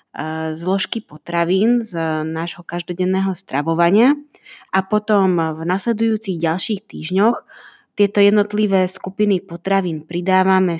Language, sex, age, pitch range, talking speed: Slovak, female, 20-39, 170-200 Hz, 95 wpm